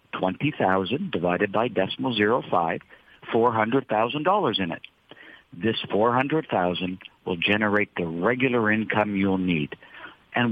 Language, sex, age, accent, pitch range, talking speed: English, male, 60-79, American, 90-120 Hz, 145 wpm